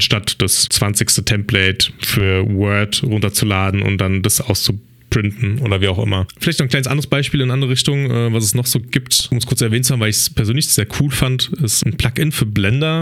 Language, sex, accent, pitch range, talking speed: German, male, German, 105-130 Hz, 225 wpm